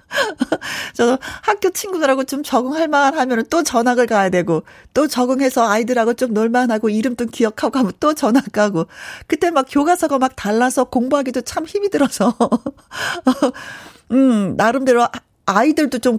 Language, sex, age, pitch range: Korean, female, 40-59, 185-270 Hz